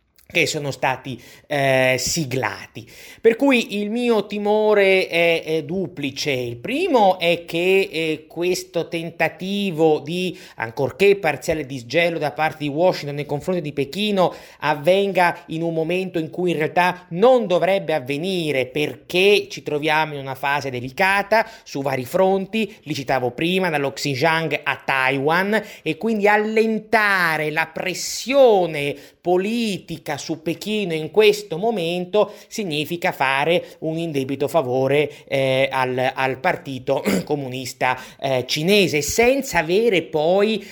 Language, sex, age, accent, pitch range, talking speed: Italian, male, 30-49, native, 145-190 Hz, 125 wpm